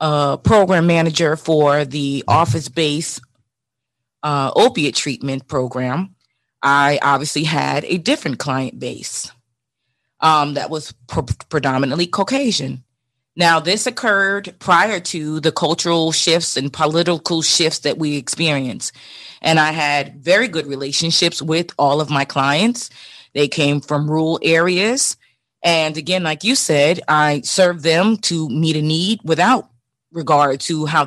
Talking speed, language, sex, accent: 130 wpm, English, female, American